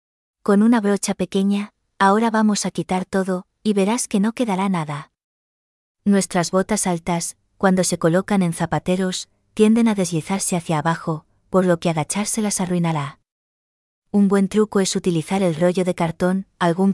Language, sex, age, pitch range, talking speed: English, female, 20-39, 170-195 Hz, 150 wpm